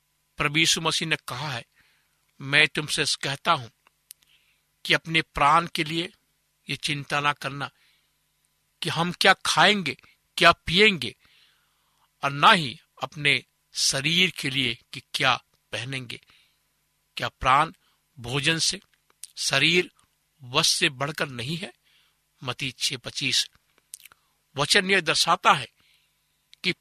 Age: 60-79